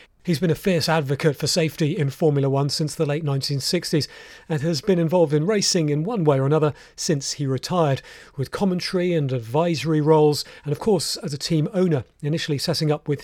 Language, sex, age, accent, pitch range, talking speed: English, male, 40-59, British, 140-175 Hz, 200 wpm